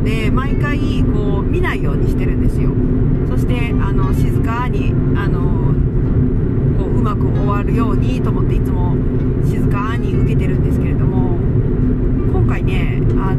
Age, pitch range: 40-59, 125-130 Hz